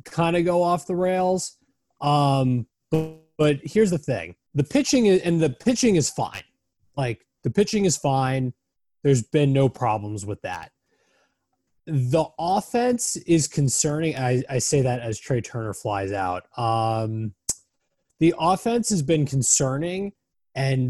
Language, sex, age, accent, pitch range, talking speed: English, male, 20-39, American, 120-160 Hz, 145 wpm